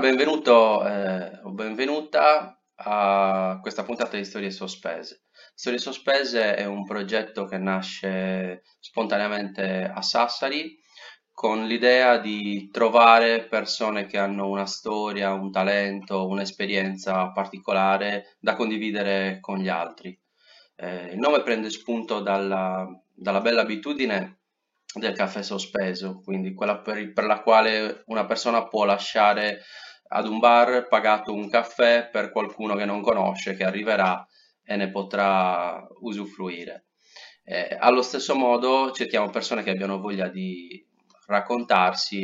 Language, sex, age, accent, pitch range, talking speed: Italian, male, 20-39, native, 95-110 Hz, 125 wpm